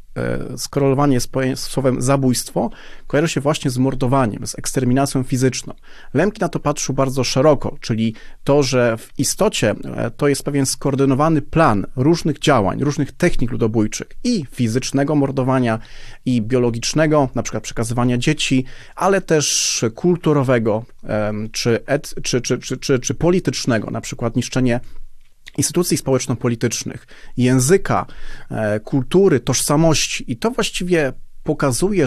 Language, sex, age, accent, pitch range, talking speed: Polish, male, 30-49, native, 120-150 Hz, 120 wpm